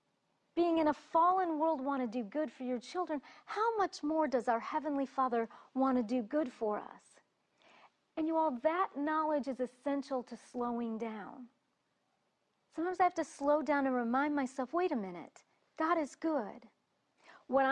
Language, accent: English, American